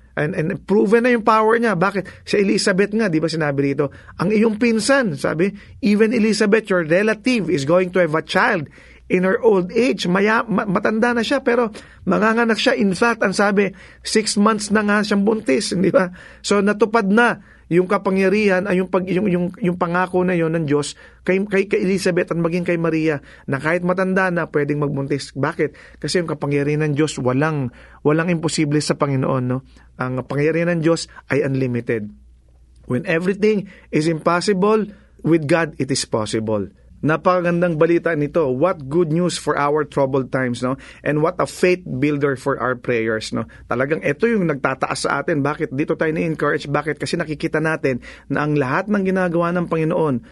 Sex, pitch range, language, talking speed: male, 140-190 Hz, English, 180 wpm